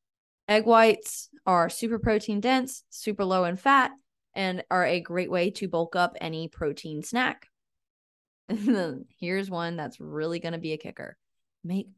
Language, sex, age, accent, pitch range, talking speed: English, female, 20-39, American, 175-230 Hz, 155 wpm